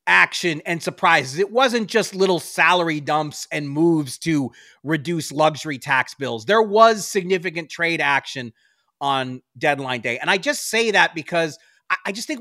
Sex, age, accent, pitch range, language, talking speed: male, 30-49, American, 150-200 Hz, English, 160 wpm